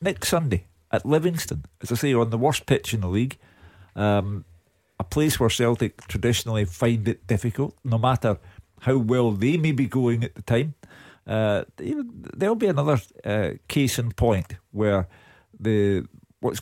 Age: 50-69